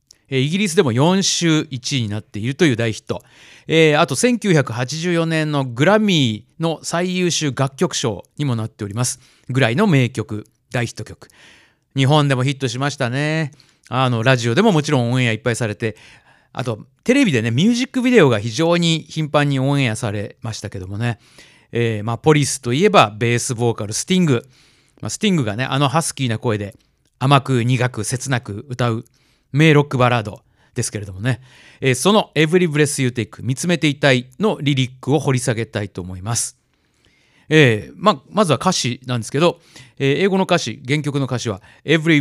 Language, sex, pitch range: Japanese, male, 120-155 Hz